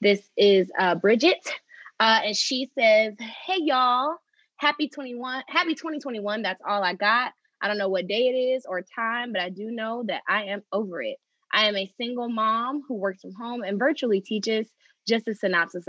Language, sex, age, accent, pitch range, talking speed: English, female, 20-39, American, 195-255 Hz, 195 wpm